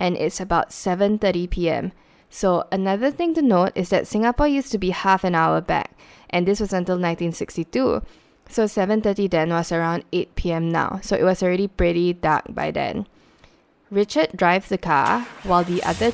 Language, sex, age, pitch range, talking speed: English, female, 10-29, 170-205 Hz, 165 wpm